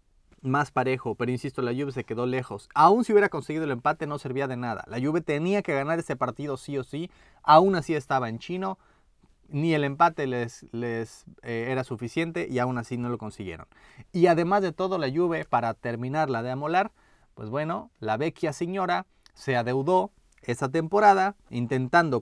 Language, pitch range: Spanish, 120-165 Hz